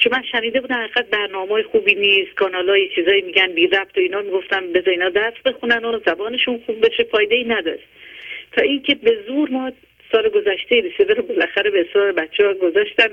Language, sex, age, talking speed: Persian, female, 50-69, 185 wpm